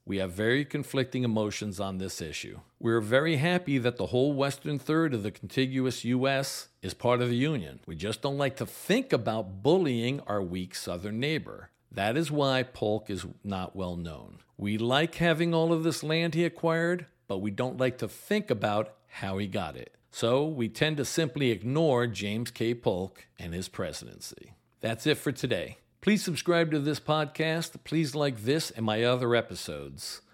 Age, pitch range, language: 50-69, 110-150 Hz, English